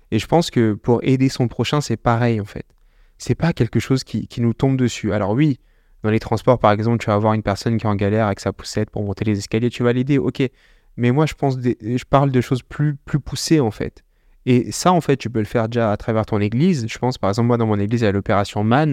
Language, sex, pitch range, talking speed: French, male, 110-135 Hz, 275 wpm